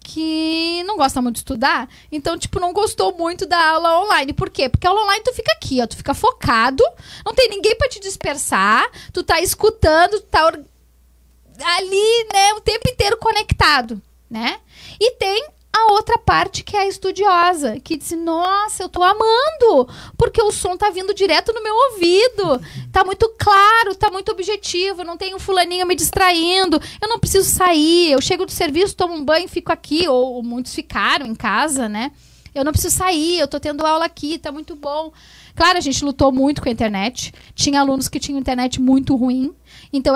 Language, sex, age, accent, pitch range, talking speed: Portuguese, female, 10-29, Brazilian, 275-390 Hz, 195 wpm